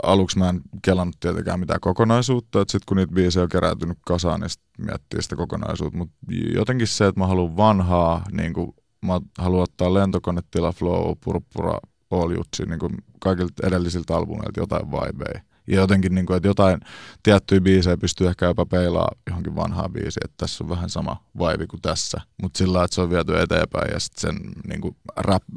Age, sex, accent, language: 20-39, male, native, Finnish